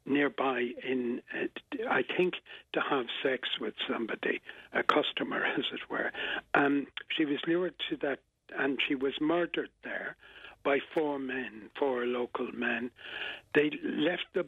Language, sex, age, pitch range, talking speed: English, male, 60-79, 125-150 Hz, 150 wpm